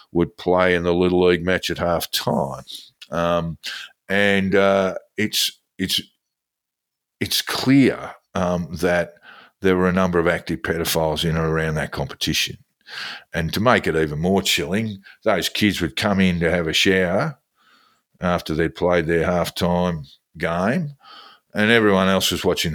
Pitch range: 80-95 Hz